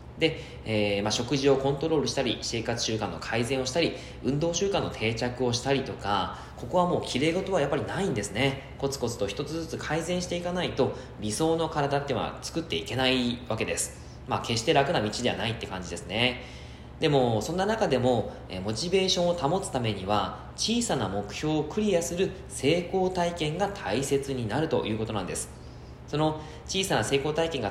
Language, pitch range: Japanese, 105-155 Hz